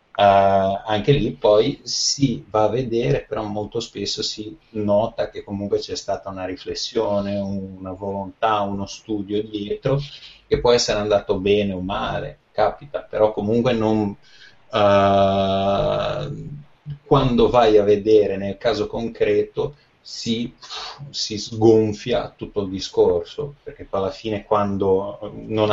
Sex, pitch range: male, 100-120 Hz